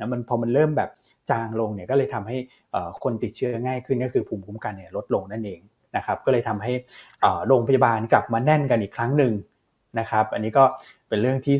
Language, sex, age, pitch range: Thai, male, 20-39, 120-145 Hz